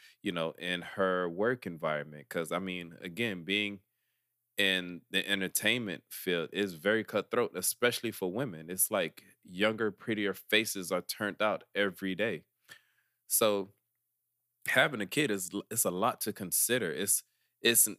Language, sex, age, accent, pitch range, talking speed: English, male, 20-39, American, 95-120 Hz, 145 wpm